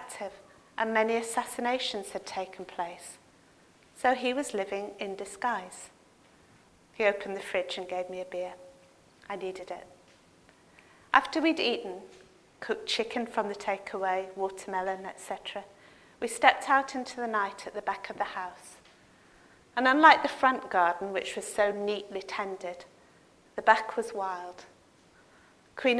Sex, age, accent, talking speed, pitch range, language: female, 40-59, British, 140 wpm, 195-230 Hz, English